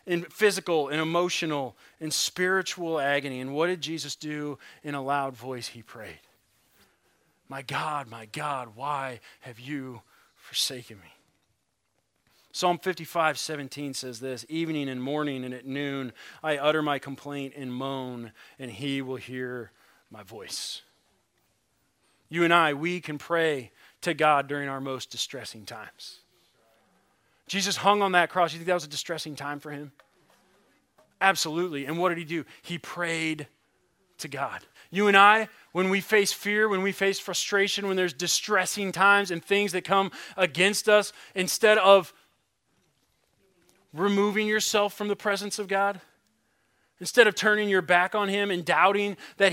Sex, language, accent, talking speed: male, English, American, 155 wpm